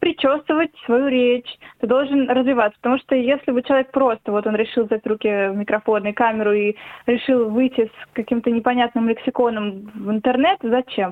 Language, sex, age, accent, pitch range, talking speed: Russian, female, 20-39, native, 215-255 Hz, 165 wpm